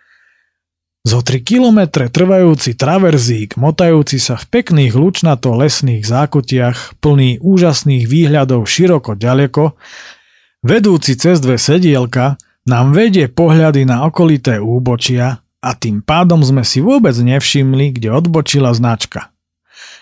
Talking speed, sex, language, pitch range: 115 wpm, male, Slovak, 115-155 Hz